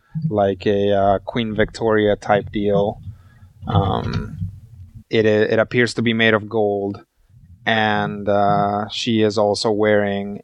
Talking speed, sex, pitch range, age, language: 125 wpm, male, 100-115 Hz, 20-39, English